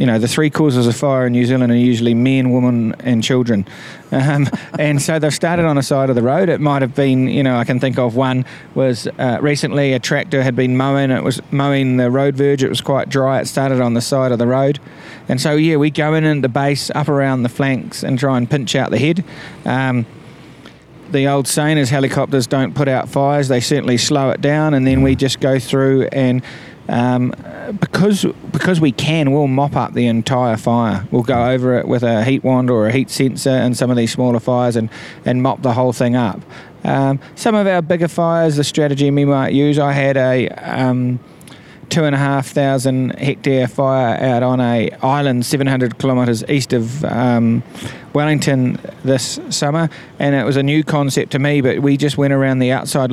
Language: English